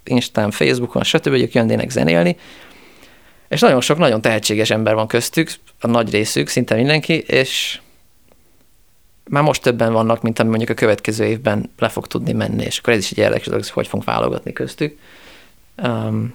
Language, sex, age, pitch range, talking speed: Hungarian, male, 30-49, 110-130 Hz, 155 wpm